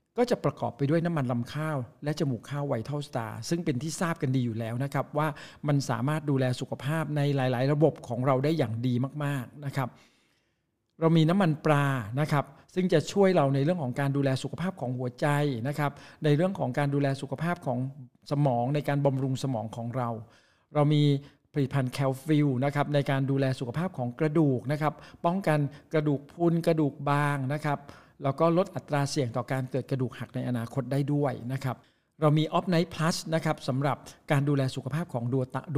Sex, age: male, 60-79